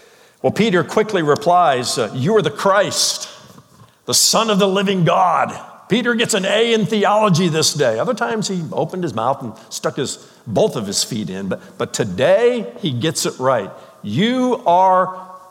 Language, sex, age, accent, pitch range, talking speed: English, male, 60-79, American, 140-205 Hz, 180 wpm